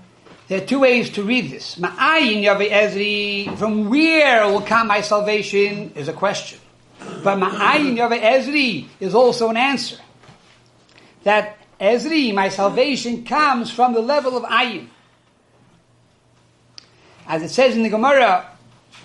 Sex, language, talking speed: male, English, 130 wpm